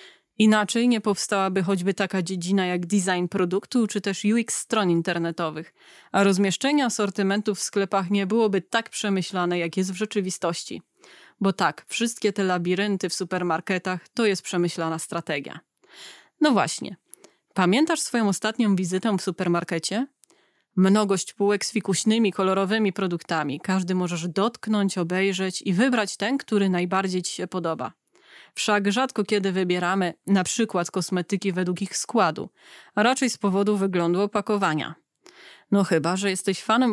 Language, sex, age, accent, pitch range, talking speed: Polish, female, 20-39, native, 185-215 Hz, 140 wpm